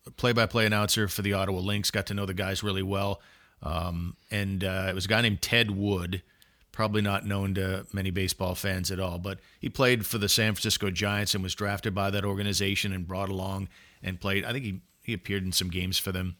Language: English